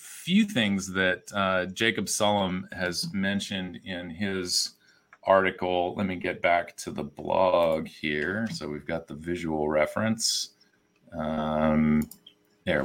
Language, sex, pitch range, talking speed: English, male, 85-110 Hz, 125 wpm